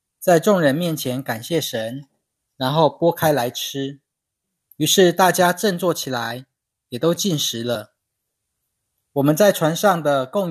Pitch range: 125-175 Hz